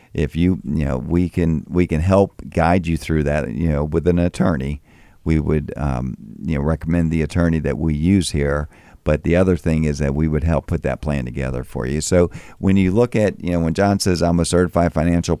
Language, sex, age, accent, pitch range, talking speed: English, male, 50-69, American, 75-90 Hz, 230 wpm